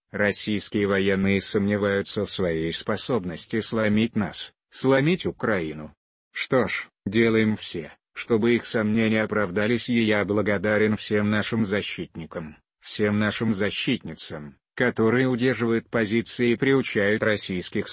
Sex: male